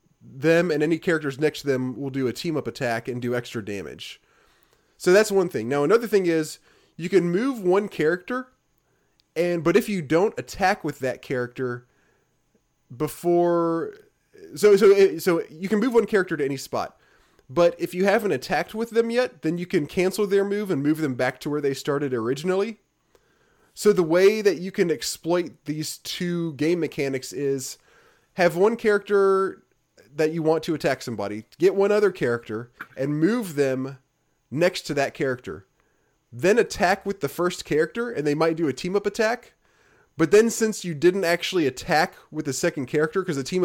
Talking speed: 185 wpm